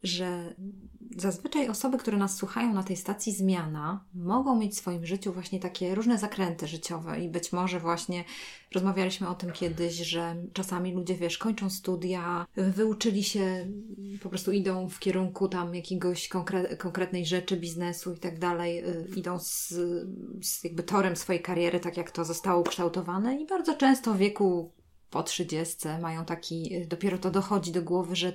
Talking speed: 165 wpm